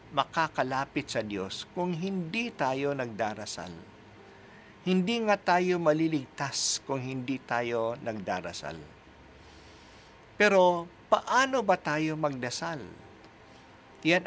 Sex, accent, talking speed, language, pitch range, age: male, native, 90 wpm, Filipino, 115-180 Hz, 50-69